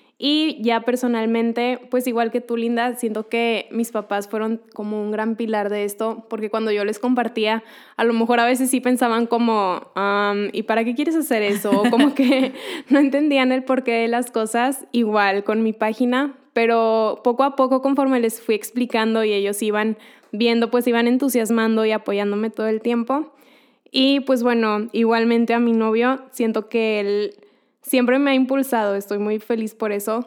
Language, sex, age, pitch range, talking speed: Spanish, female, 10-29, 215-250 Hz, 180 wpm